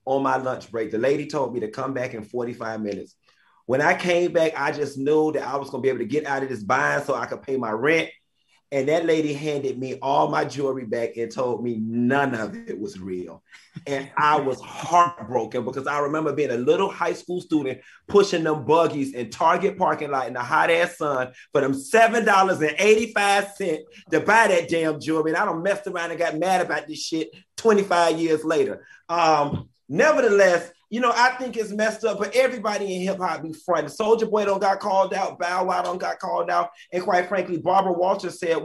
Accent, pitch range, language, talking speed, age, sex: American, 135-190 Hz, English, 210 wpm, 30-49, male